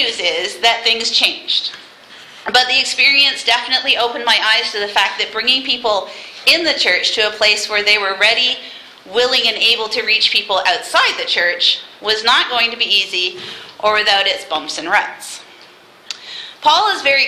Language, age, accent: English, 40-59, American